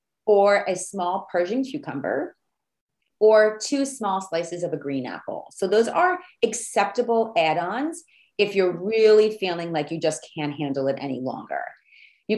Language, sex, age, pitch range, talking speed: English, female, 30-49, 175-235 Hz, 150 wpm